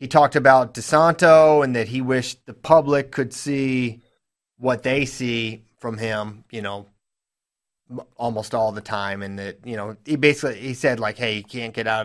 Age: 30-49